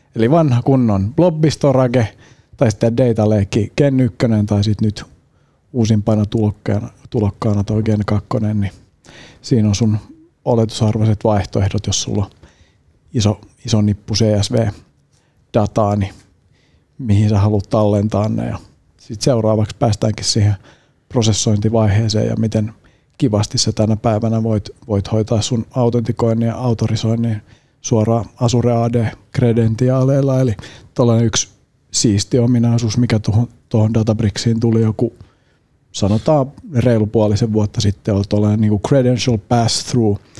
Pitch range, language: 105-120 Hz, Finnish